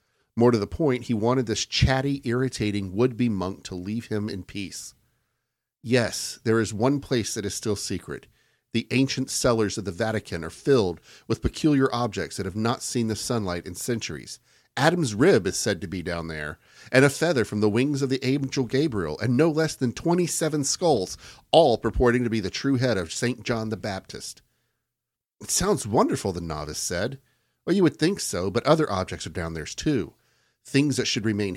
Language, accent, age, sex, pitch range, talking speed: English, American, 50-69, male, 95-130 Hz, 195 wpm